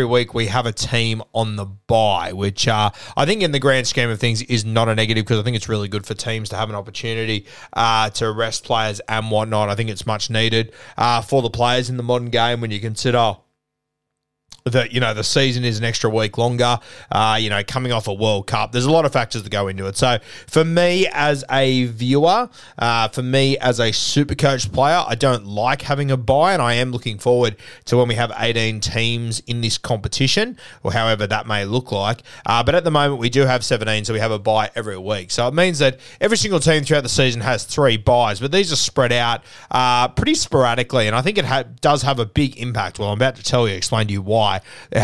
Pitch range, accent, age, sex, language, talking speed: 110-130 Hz, Australian, 20-39, male, English, 240 wpm